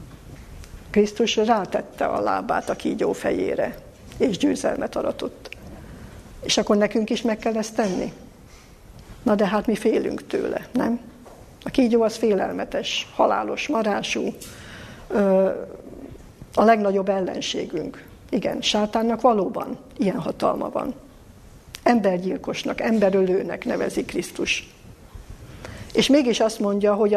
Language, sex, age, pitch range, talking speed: Hungarian, female, 60-79, 195-225 Hz, 110 wpm